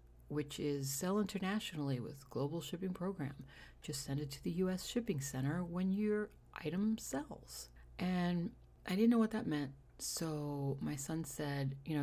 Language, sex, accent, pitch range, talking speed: English, female, American, 140-185 Hz, 170 wpm